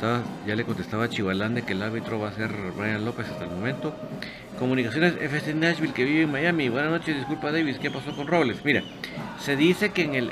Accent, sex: Mexican, male